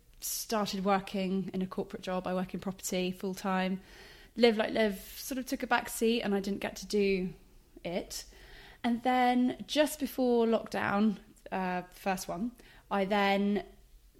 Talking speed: 155 wpm